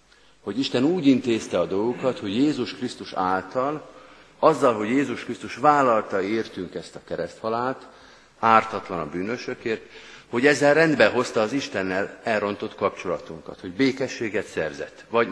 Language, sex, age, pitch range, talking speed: Hungarian, male, 50-69, 105-130 Hz, 135 wpm